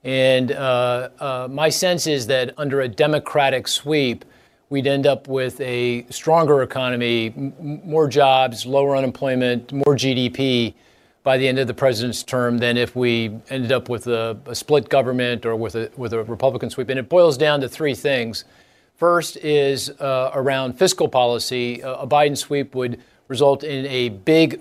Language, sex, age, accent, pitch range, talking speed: English, male, 40-59, American, 125-145 Hz, 170 wpm